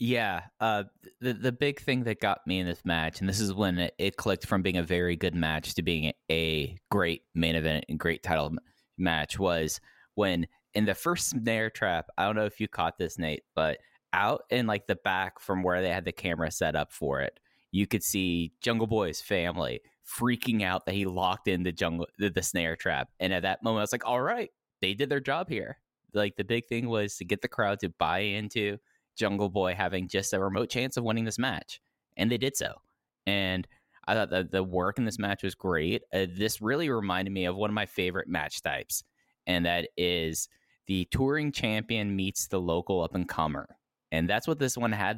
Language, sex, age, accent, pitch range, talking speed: English, male, 10-29, American, 90-115 Hz, 220 wpm